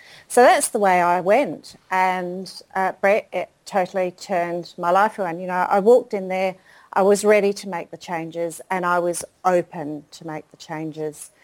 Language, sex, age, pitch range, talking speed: English, female, 40-59, 155-185 Hz, 185 wpm